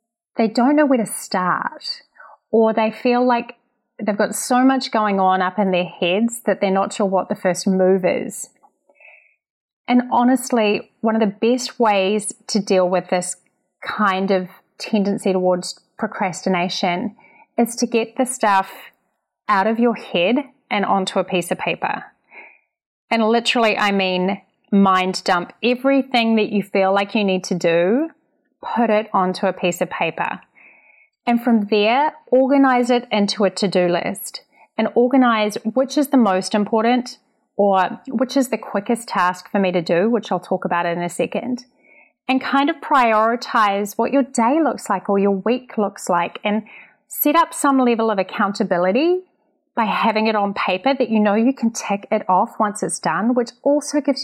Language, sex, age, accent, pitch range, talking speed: English, female, 30-49, Australian, 195-250 Hz, 170 wpm